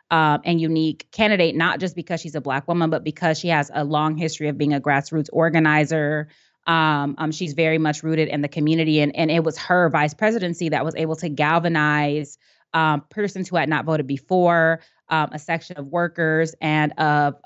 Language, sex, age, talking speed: English, female, 20-39, 200 wpm